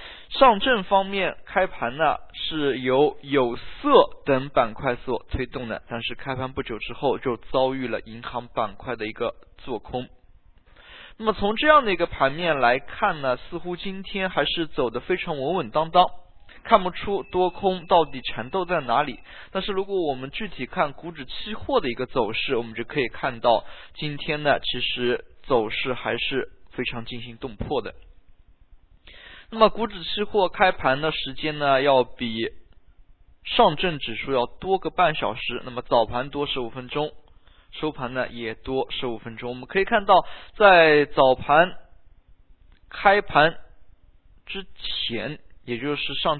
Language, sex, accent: Chinese, male, native